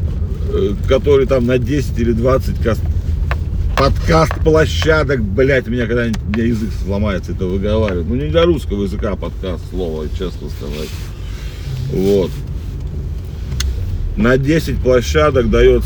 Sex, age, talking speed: male, 40-59, 120 wpm